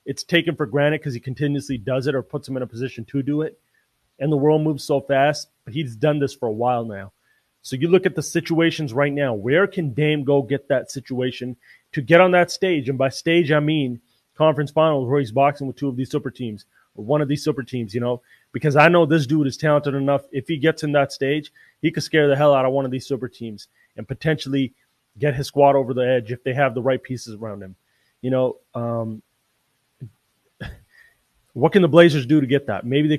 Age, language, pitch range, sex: 30-49, English, 130-150 Hz, male